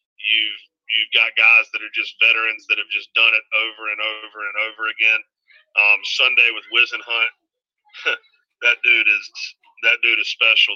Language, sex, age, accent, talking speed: English, male, 40-59, American, 175 wpm